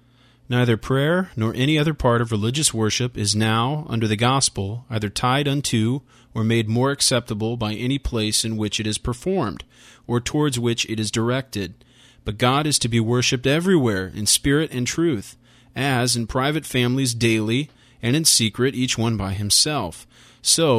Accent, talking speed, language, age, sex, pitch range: American, 170 wpm, English, 40-59, male, 110-130 Hz